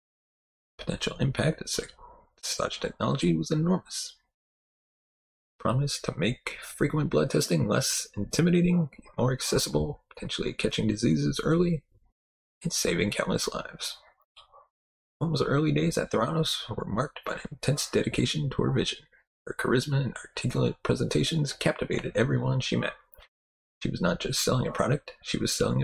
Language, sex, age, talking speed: English, male, 30-49, 140 wpm